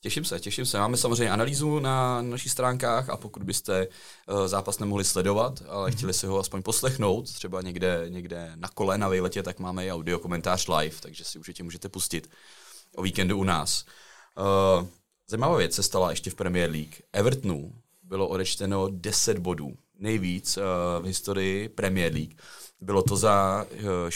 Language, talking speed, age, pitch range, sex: Czech, 170 wpm, 30-49, 85-100 Hz, male